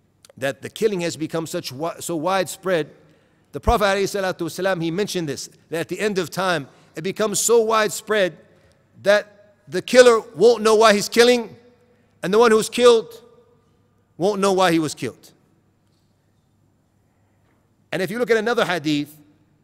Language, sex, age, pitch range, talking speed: English, male, 40-59, 130-195 Hz, 155 wpm